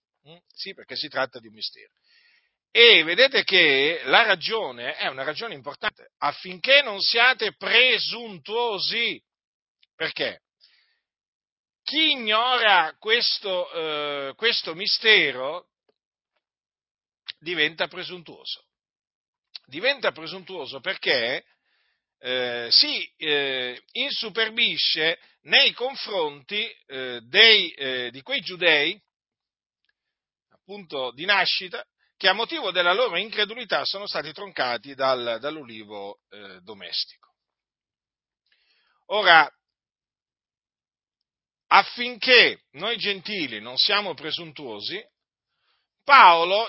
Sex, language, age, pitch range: male, Italian, 50-69, 150-250 Hz